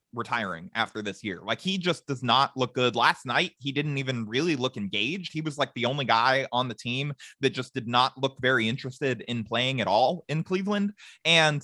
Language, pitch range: English, 120-155 Hz